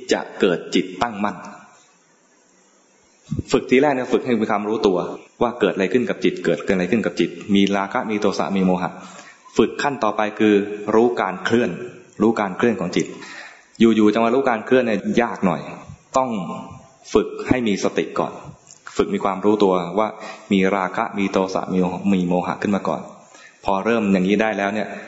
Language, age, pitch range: English, 20-39, 100-115 Hz